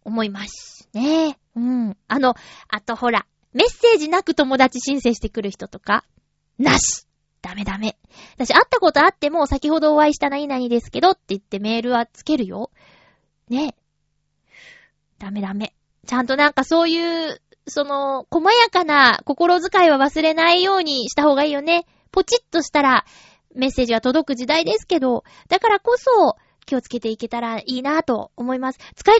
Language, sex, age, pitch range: Japanese, female, 20-39, 230-330 Hz